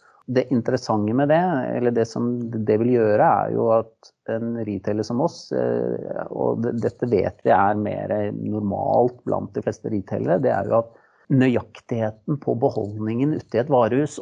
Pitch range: 105-115 Hz